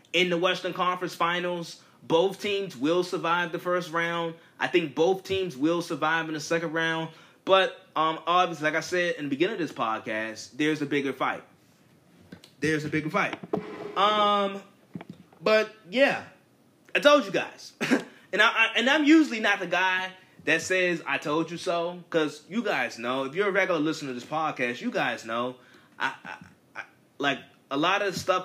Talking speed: 185 wpm